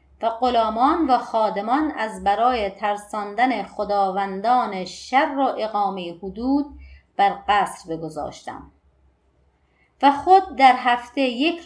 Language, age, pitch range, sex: Persian, 30-49, 205-285 Hz, female